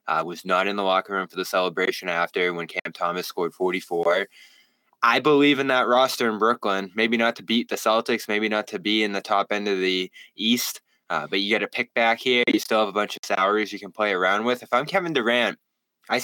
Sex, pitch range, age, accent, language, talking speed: male, 95-130 Hz, 10-29, American, English, 240 wpm